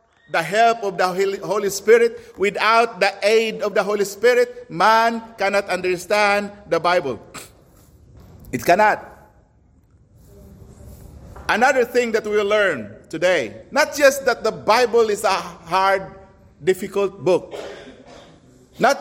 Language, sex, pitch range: English, male, 185-240 Hz